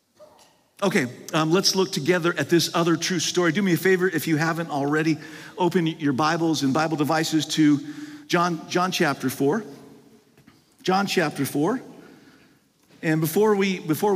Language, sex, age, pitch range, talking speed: English, male, 50-69, 155-200 Hz, 155 wpm